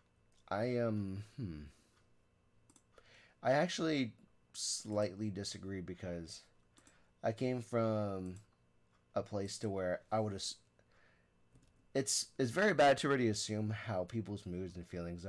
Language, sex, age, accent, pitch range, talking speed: English, male, 30-49, American, 90-115 Hz, 125 wpm